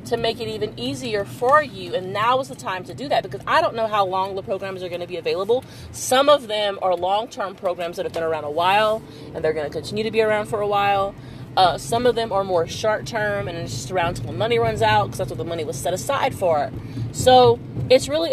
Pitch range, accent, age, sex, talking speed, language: 145-225 Hz, American, 30-49, female, 250 wpm, English